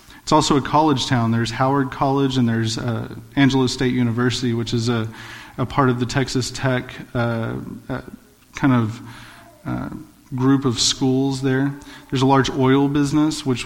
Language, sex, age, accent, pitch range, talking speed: English, male, 40-59, American, 120-135 Hz, 165 wpm